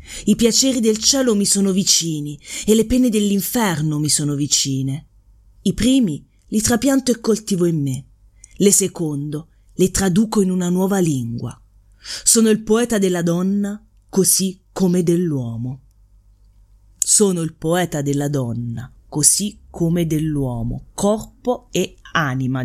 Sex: female